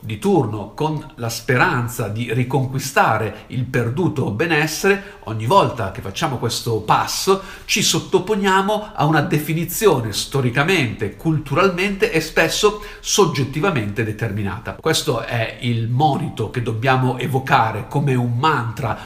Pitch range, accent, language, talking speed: 120-160 Hz, native, Italian, 115 wpm